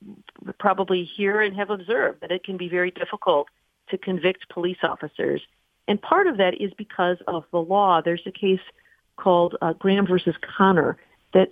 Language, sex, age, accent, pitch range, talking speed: English, female, 50-69, American, 170-200 Hz, 170 wpm